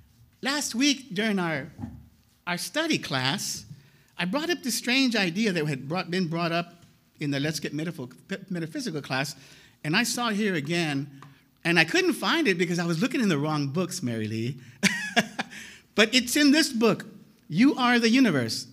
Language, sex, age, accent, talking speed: English, male, 50-69, American, 180 wpm